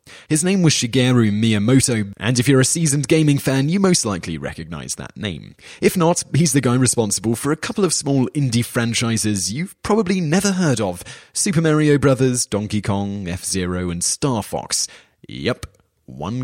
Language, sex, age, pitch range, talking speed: English, male, 30-49, 100-130 Hz, 170 wpm